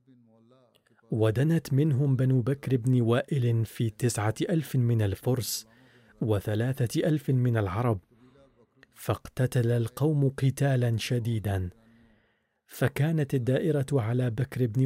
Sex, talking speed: male, 95 wpm